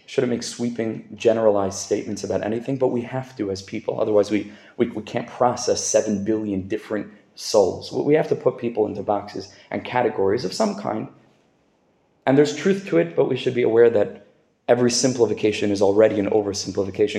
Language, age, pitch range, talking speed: English, 20-39, 105-130 Hz, 180 wpm